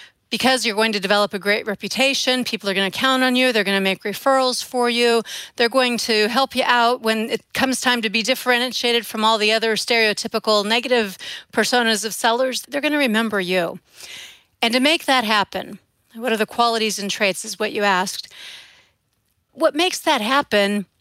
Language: English